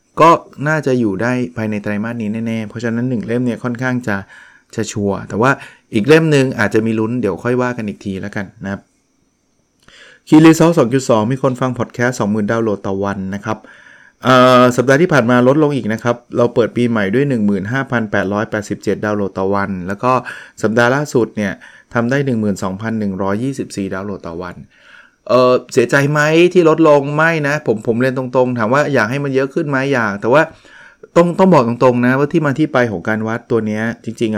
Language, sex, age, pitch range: Thai, male, 20-39, 105-130 Hz